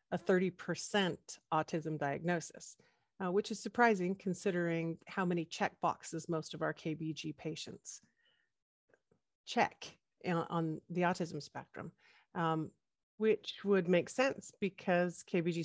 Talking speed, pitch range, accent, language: 115 wpm, 160-195 Hz, American, English